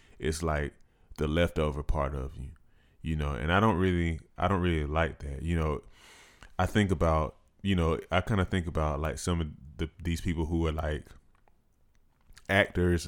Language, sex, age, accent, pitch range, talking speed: English, male, 20-39, American, 75-85 Hz, 180 wpm